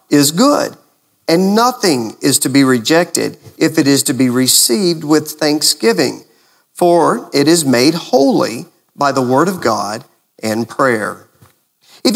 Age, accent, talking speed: 50-69, American, 145 wpm